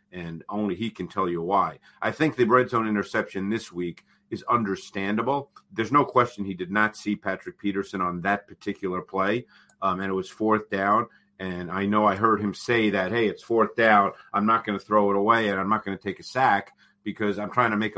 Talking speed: 225 wpm